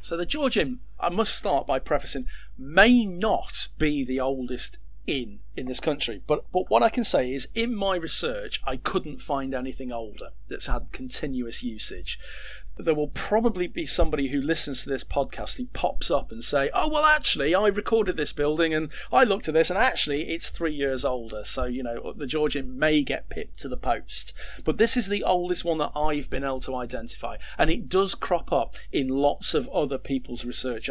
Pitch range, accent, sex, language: 130-195 Hz, British, male, English